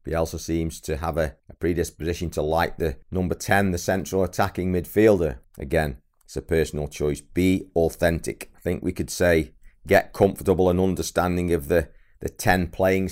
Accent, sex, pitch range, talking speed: British, male, 75-90 Hz, 170 wpm